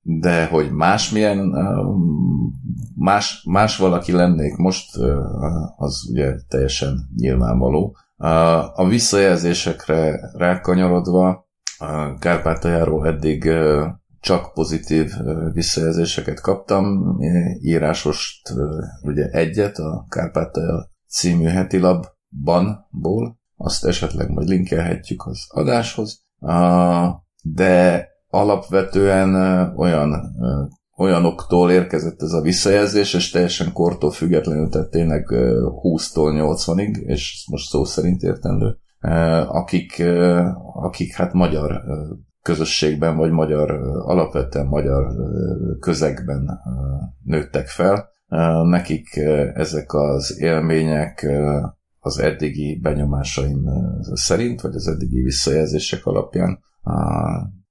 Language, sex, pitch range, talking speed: Hungarian, male, 75-90 Hz, 85 wpm